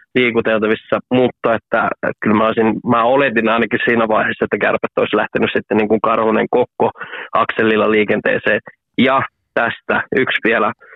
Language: Finnish